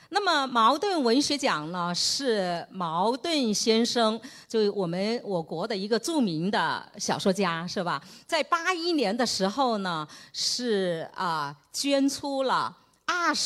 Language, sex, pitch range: Chinese, female, 190-260 Hz